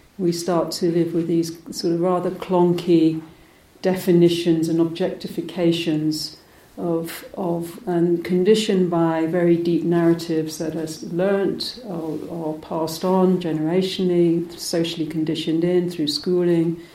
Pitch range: 160-180 Hz